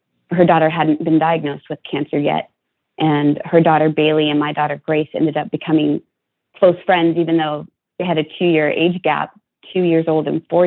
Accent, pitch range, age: American, 160-190 Hz, 30-49